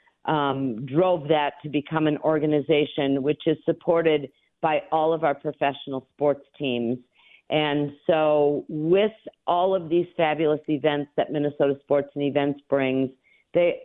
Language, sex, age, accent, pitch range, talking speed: English, female, 50-69, American, 145-170 Hz, 140 wpm